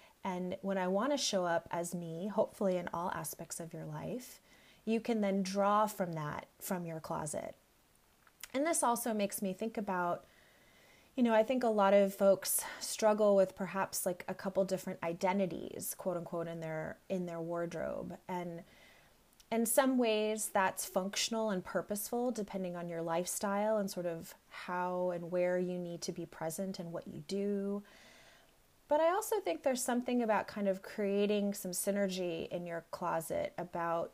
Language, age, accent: English, 30-49, American